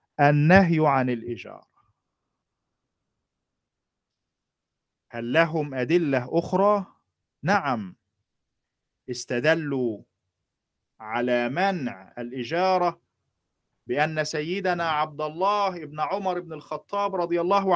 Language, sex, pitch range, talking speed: Arabic, male, 135-200 Hz, 75 wpm